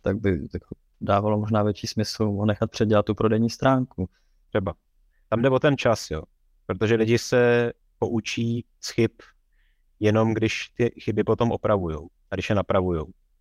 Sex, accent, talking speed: male, native, 155 wpm